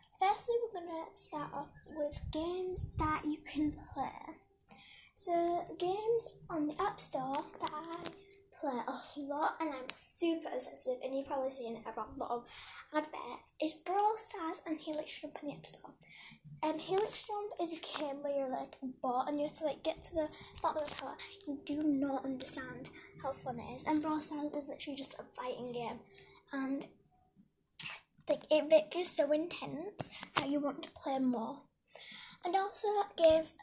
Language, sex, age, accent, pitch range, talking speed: English, female, 10-29, British, 270-330 Hz, 180 wpm